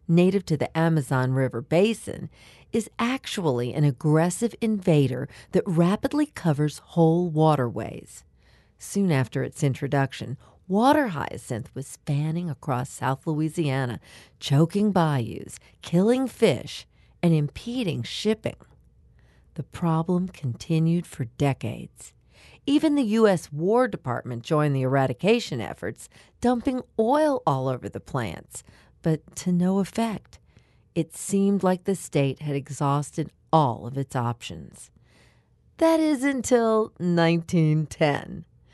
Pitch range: 135-210 Hz